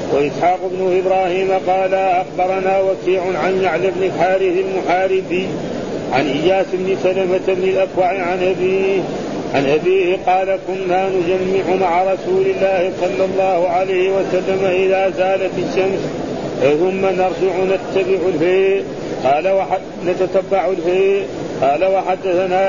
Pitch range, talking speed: 185-190 Hz, 110 wpm